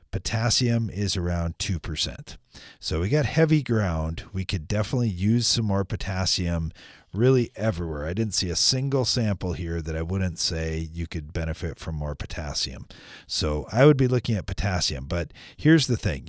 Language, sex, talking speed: English, male, 170 wpm